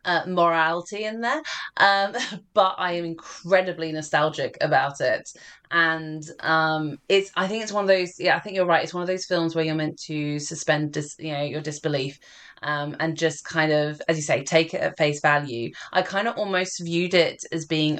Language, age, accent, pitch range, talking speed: English, 20-39, British, 150-170 Hz, 205 wpm